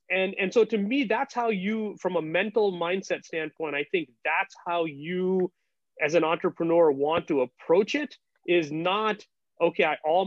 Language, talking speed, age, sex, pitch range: English, 175 wpm, 30-49, male, 160-210 Hz